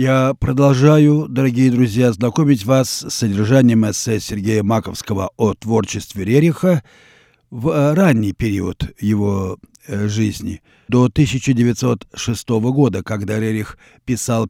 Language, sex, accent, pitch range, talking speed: Russian, male, native, 110-145 Hz, 105 wpm